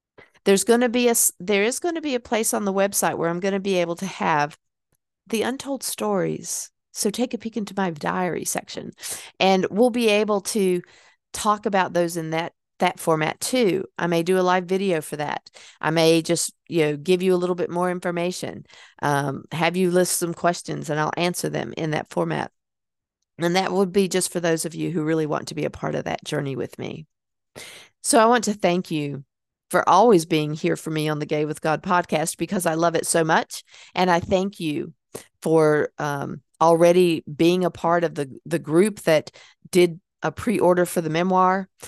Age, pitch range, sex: 50-69, 160-190 Hz, female